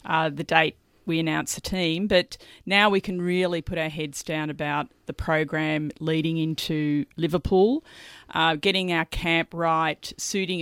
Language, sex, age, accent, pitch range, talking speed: English, female, 40-59, Australian, 150-180 Hz, 160 wpm